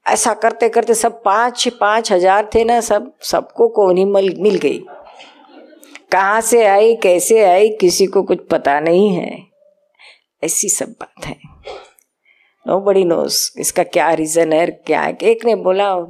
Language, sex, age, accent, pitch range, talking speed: Hindi, female, 50-69, native, 180-245 Hz, 160 wpm